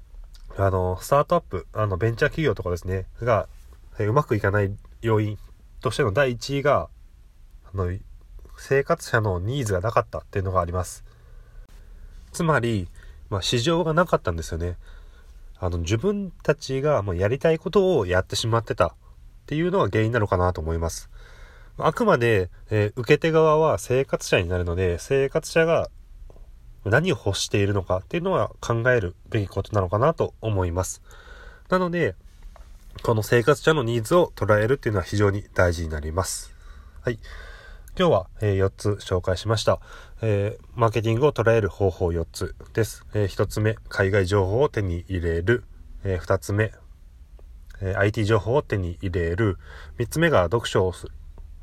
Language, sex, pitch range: Japanese, male, 85-120 Hz